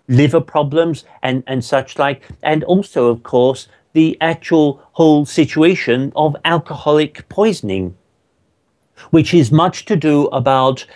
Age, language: 50-69, English